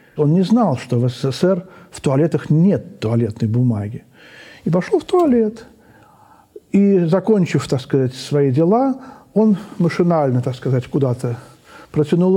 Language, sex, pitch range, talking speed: Russian, male, 150-220 Hz, 130 wpm